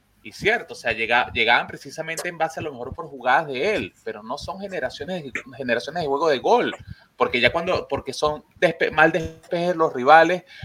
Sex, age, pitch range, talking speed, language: male, 30-49, 115-155 Hz, 195 wpm, Spanish